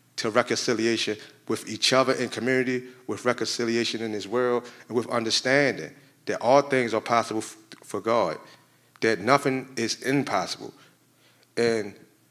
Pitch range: 115-135 Hz